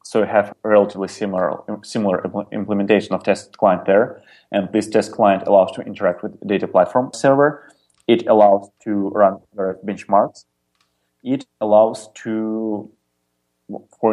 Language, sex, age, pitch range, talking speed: English, male, 20-39, 95-105 Hz, 145 wpm